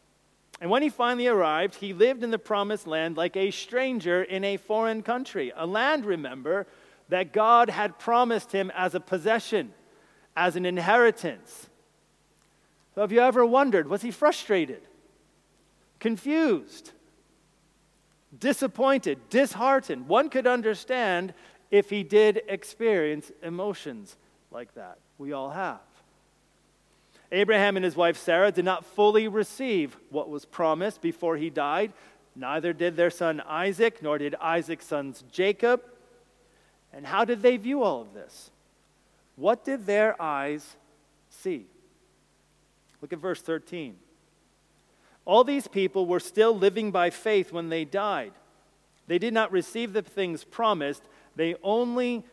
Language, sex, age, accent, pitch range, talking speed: English, male, 40-59, American, 175-235 Hz, 135 wpm